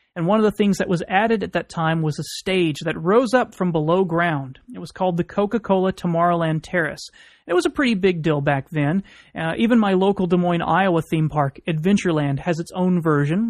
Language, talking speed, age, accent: English, 220 wpm, 30-49, American